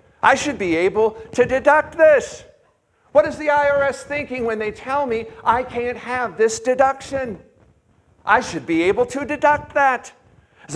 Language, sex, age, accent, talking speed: English, male, 50-69, American, 160 wpm